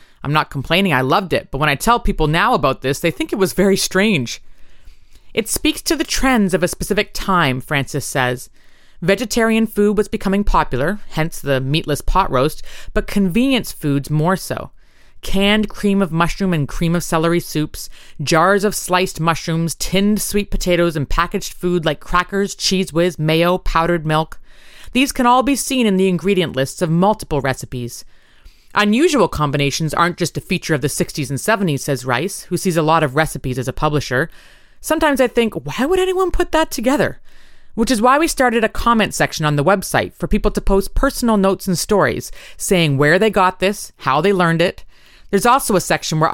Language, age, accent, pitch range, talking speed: English, 30-49, American, 150-205 Hz, 190 wpm